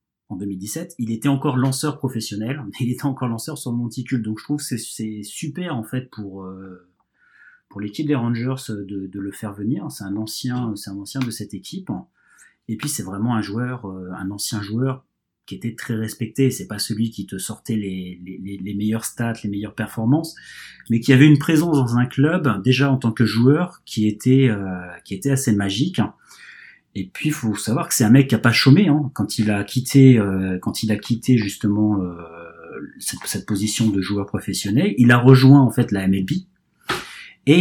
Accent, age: French, 30-49